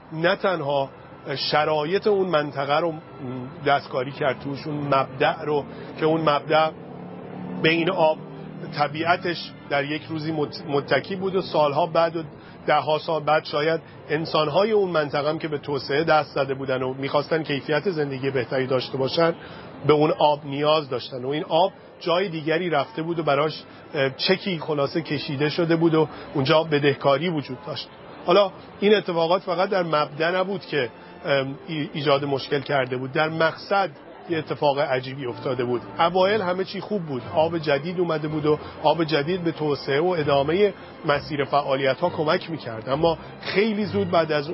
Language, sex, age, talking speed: English, male, 40-59, 160 wpm